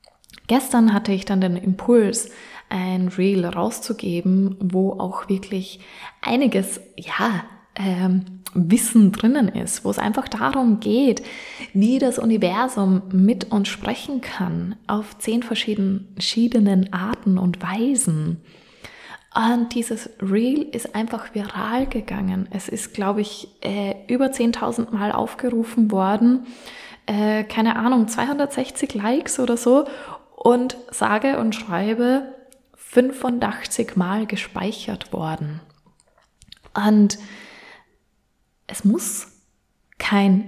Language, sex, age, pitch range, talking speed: German, female, 20-39, 195-245 Hz, 105 wpm